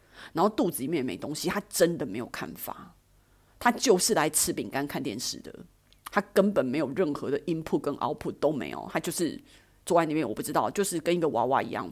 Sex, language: female, Chinese